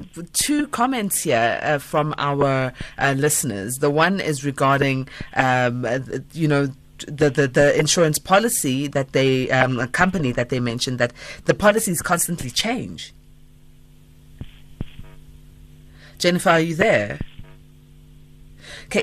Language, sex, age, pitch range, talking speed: English, female, 30-49, 130-170 Hz, 120 wpm